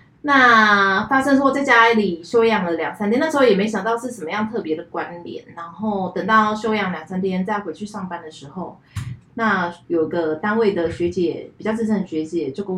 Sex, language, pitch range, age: female, Chinese, 170-220 Hz, 20-39